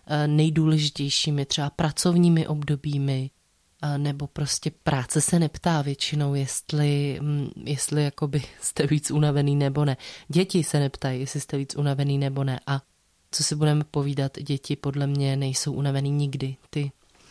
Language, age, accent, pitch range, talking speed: Czech, 20-39, native, 140-160 Hz, 135 wpm